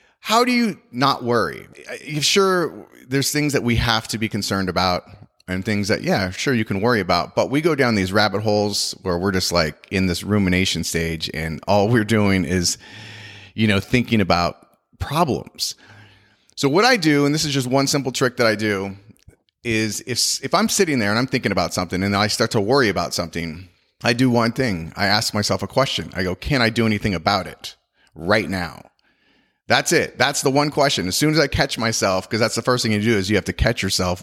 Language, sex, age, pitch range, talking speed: English, male, 30-49, 95-125 Hz, 220 wpm